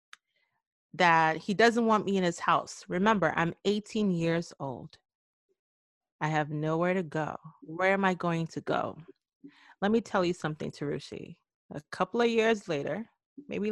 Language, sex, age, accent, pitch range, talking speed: English, female, 30-49, American, 160-220 Hz, 155 wpm